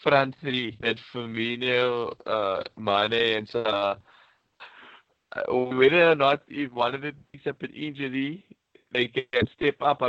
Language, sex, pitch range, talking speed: English, male, 110-130 Hz, 135 wpm